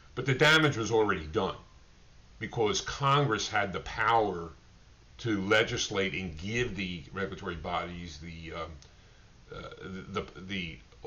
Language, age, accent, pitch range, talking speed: English, 50-69, American, 85-100 Hz, 130 wpm